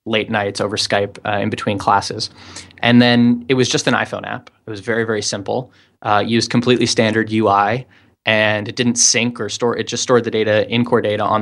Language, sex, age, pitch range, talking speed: English, male, 20-39, 105-120 Hz, 215 wpm